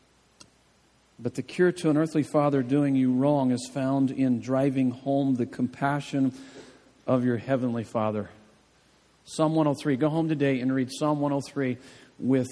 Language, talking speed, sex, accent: English, 150 wpm, male, American